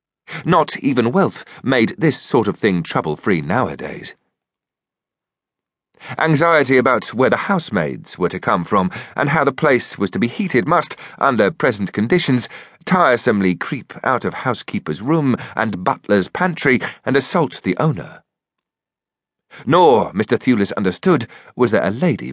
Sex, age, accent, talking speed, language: male, 40-59, British, 140 wpm, English